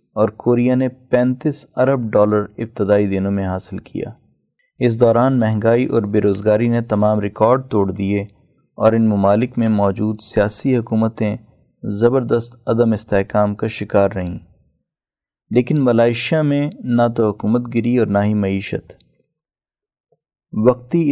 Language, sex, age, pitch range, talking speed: Urdu, male, 30-49, 105-120 Hz, 130 wpm